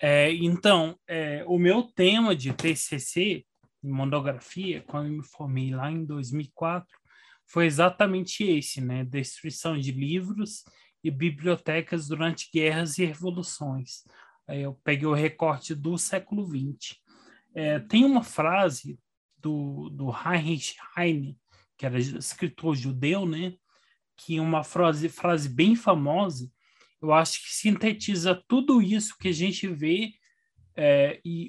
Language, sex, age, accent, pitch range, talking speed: Portuguese, male, 20-39, Brazilian, 145-195 Hz, 130 wpm